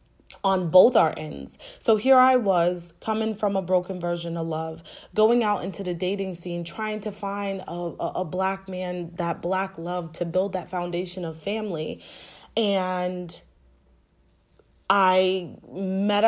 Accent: American